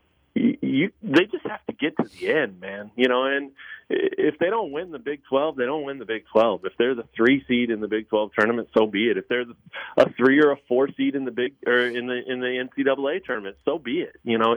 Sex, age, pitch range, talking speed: male, 40-59, 115-140 Hz, 260 wpm